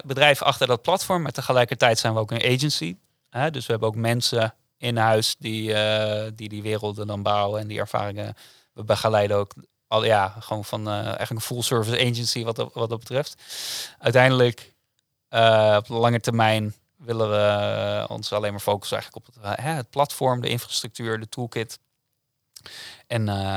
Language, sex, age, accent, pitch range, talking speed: Dutch, male, 20-39, Dutch, 105-125 Hz, 175 wpm